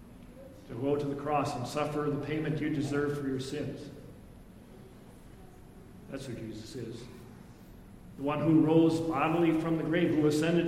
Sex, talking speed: male, 155 wpm